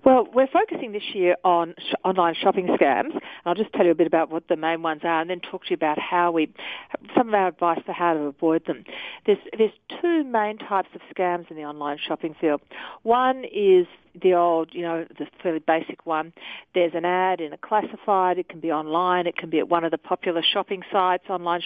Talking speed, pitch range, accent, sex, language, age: 230 wpm, 165-205 Hz, Australian, female, English, 40-59